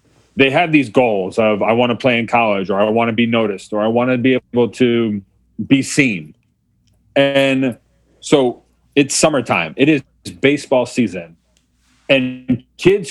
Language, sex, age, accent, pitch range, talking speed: English, male, 40-59, American, 105-150 Hz, 165 wpm